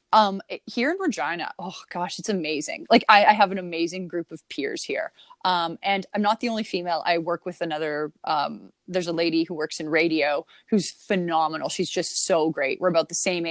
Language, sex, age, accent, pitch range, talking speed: English, female, 20-39, American, 165-205 Hz, 210 wpm